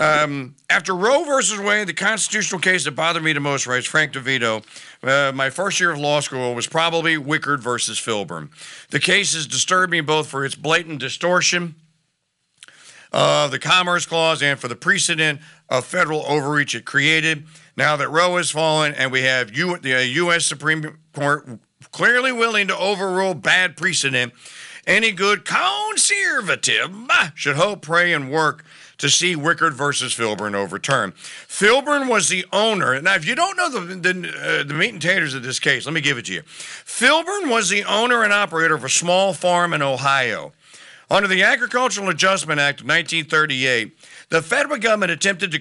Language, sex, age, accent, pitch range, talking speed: English, male, 50-69, American, 145-190 Hz, 175 wpm